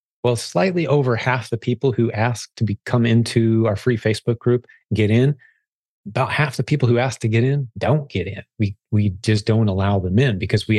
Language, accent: English, American